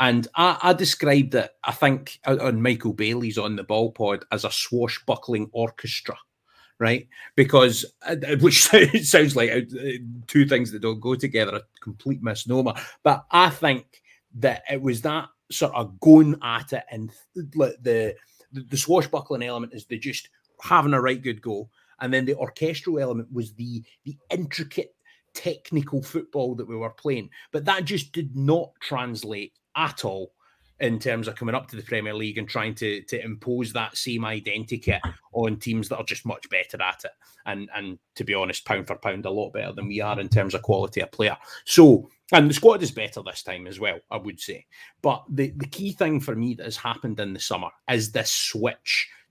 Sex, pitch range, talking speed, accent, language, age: male, 110-145 Hz, 190 wpm, British, English, 30-49